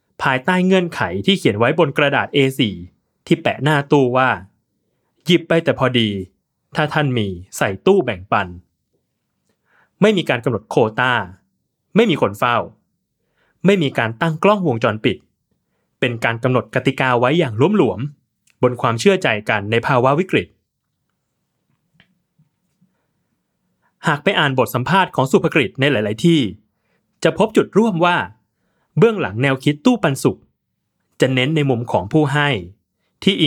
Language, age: Thai, 20-39